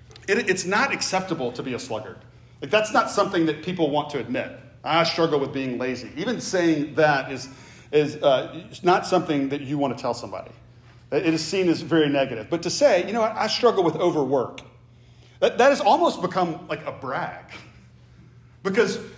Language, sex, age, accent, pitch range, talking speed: English, male, 40-59, American, 125-165 Hz, 195 wpm